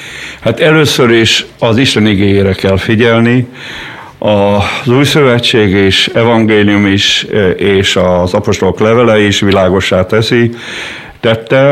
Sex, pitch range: male, 95-115 Hz